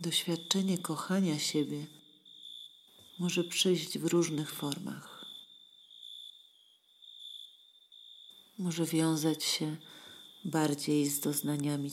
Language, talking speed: Polish, 70 wpm